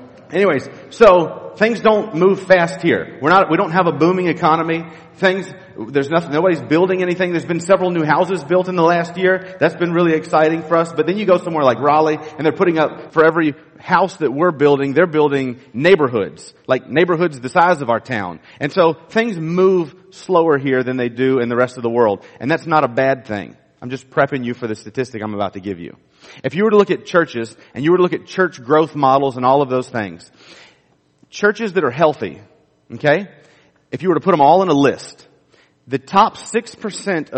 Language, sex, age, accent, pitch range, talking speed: English, male, 40-59, American, 130-180 Hz, 220 wpm